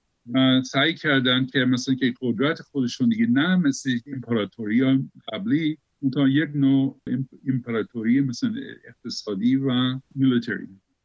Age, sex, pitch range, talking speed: 50-69, male, 120-145 Hz, 120 wpm